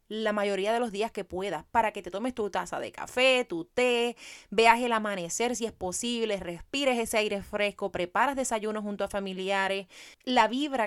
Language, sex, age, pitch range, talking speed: Spanish, female, 30-49, 185-240 Hz, 190 wpm